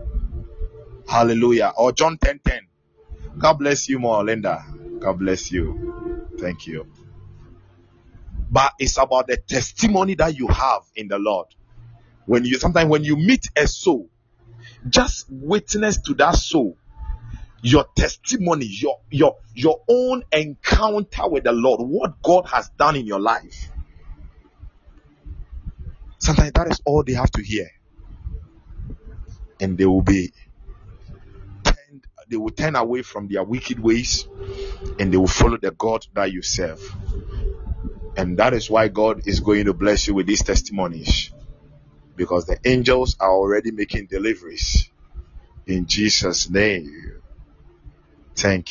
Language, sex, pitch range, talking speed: English, male, 95-130 Hz, 135 wpm